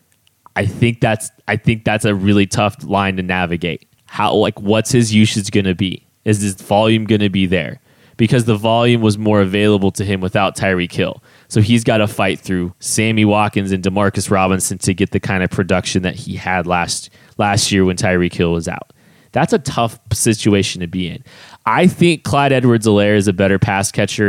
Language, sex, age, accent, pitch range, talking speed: English, male, 20-39, American, 95-115 Hz, 205 wpm